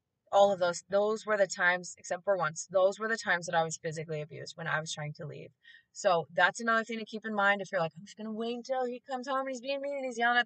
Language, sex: English, female